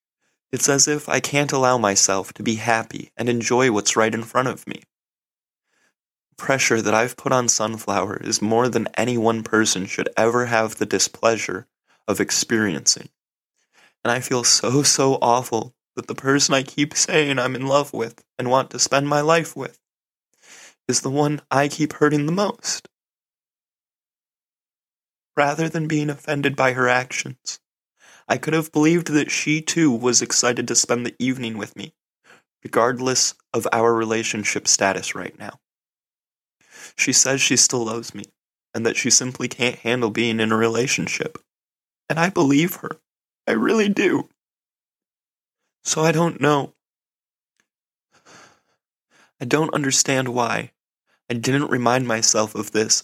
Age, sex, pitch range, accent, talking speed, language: 20-39, male, 115-140 Hz, American, 155 wpm, English